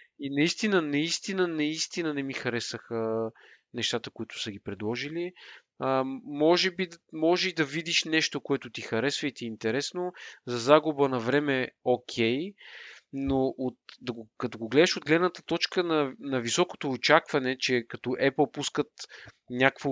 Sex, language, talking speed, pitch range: male, Bulgarian, 150 wpm, 125-170 Hz